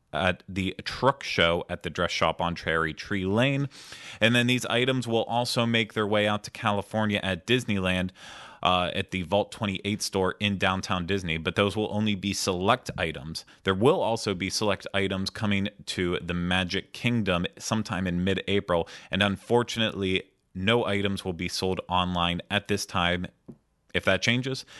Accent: American